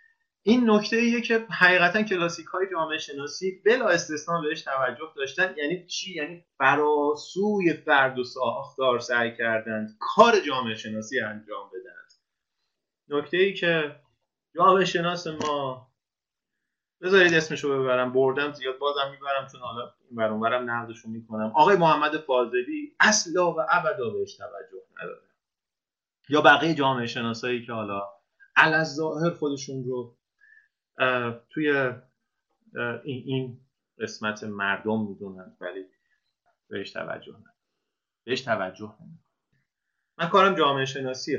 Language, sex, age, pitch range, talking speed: Persian, male, 30-49, 115-175 Hz, 120 wpm